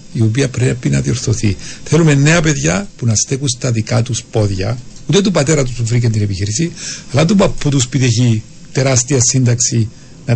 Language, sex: Greek, male